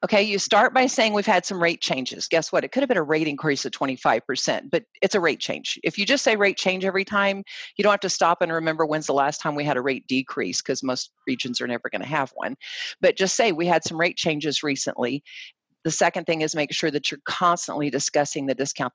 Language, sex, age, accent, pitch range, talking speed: English, female, 50-69, American, 140-175 Hz, 255 wpm